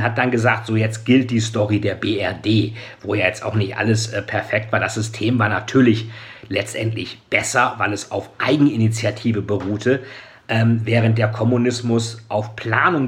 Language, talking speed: German, 160 wpm